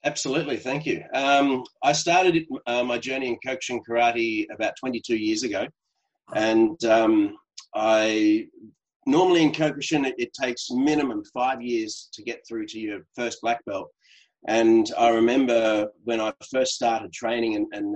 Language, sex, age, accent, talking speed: English, male, 30-49, Australian, 155 wpm